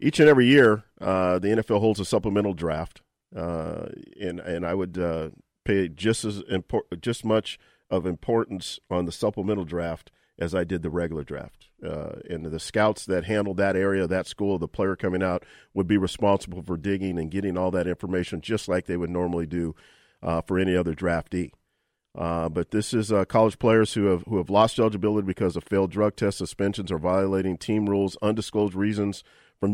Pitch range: 90-105 Hz